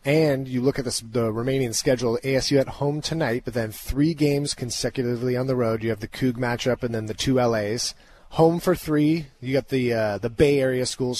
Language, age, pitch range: English, 30-49, 110-135 Hz